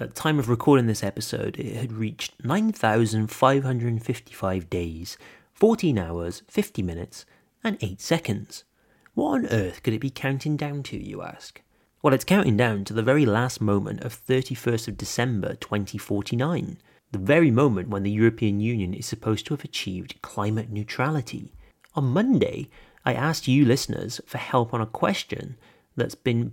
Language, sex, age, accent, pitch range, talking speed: English, male, 30-49, British, 105-150 Hz, 160 wpm